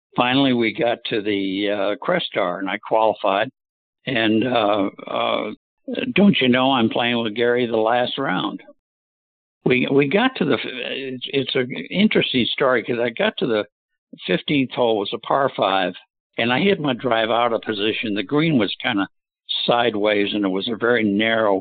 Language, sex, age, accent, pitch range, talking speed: English, male, 60-79, American, 105-135 Hz, 180 wpm